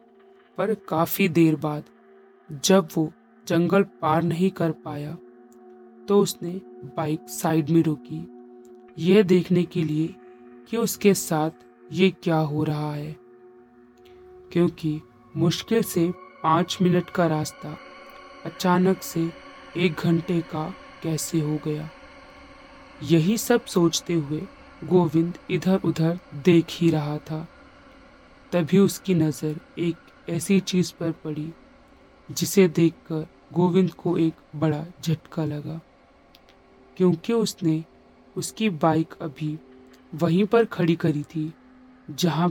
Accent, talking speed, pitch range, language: native, 115 wpm, 155-185 Hz, Hindi